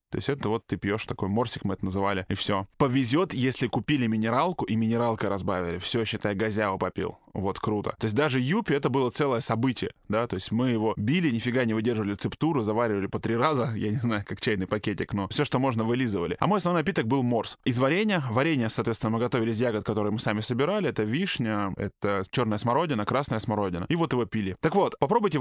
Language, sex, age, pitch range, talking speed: Russian, male, 20-39, 110-145 Hz, 215 wpm